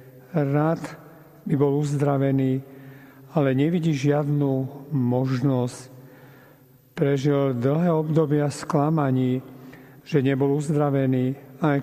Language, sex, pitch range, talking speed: Slovak, male, 135-150 Hz, 80 wpm